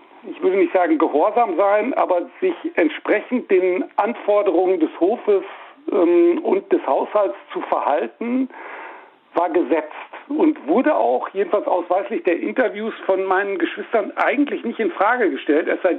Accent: German